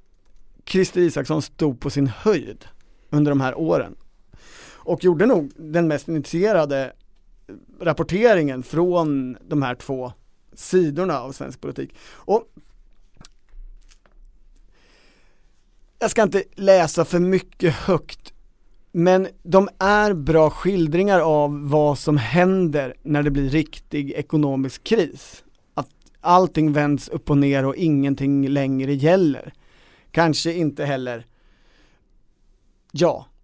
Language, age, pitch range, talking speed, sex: Swedish, 30-49, 140-175 Hz, 110 wpm, male